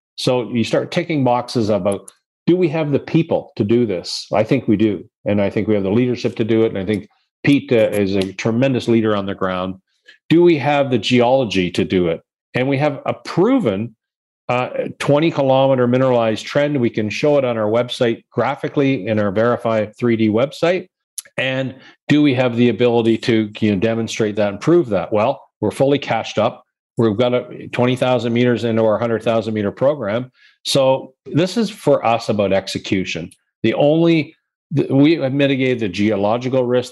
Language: English